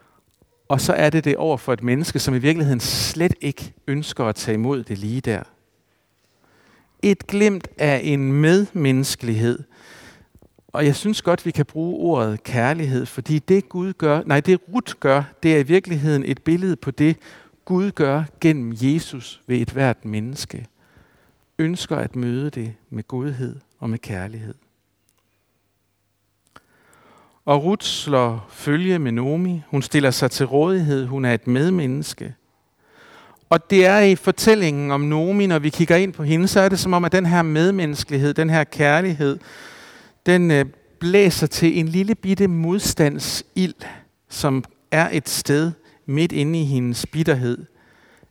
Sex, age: male, 60-79